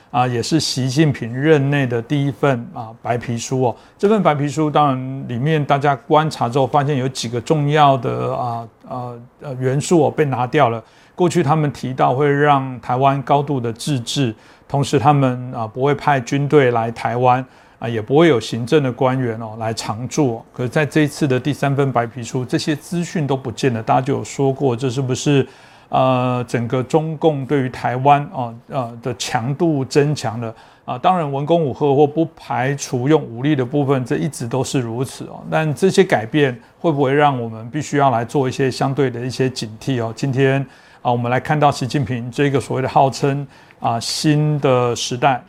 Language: Chinese